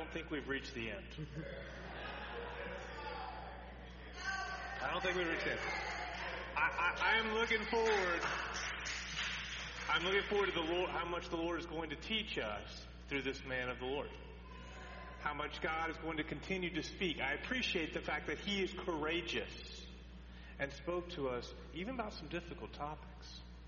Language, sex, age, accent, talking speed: English, male, 40-59, American, 160 wpm